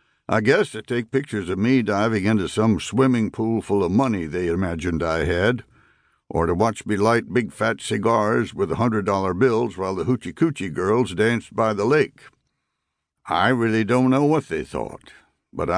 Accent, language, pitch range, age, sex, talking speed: American, English, 105-130 Hz, 60-79, male, 180 wpm